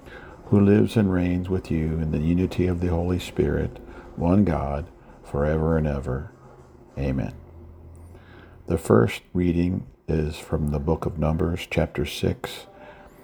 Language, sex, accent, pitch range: English, male, American, 75-90 Hz